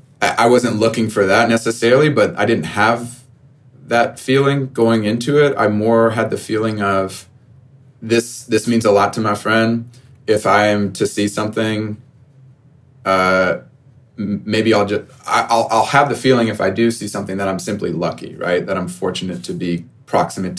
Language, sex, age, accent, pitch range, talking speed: English, male, 30-49, American, 95-120 Hz, 180 wpm